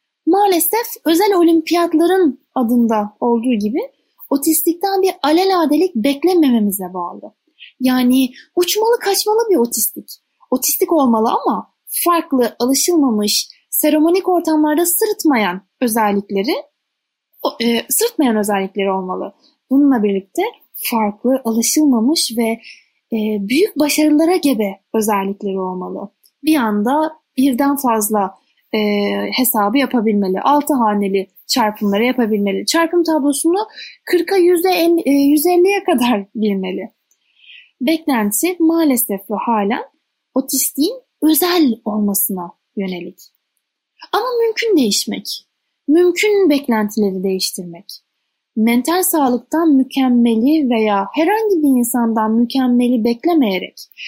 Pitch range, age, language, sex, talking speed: 215-330 Hz, 10-29, Turkish, female, 90 wpm